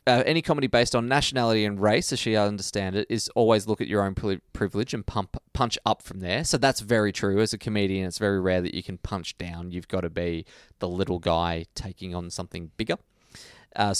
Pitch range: 90-105 Hz